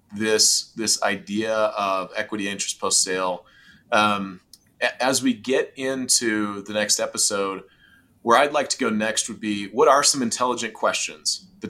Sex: male